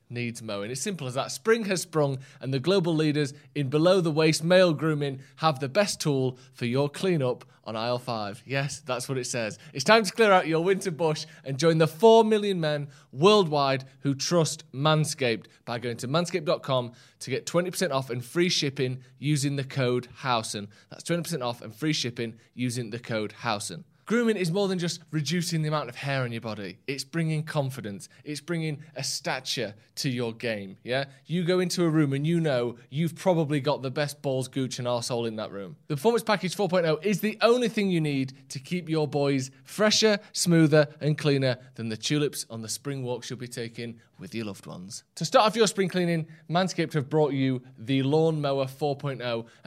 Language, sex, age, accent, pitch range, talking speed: English, male, 20-39, British, 125-165 Hz, 200 wpm